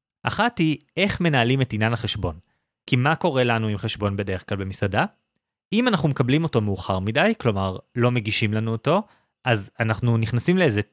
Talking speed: 170 wpm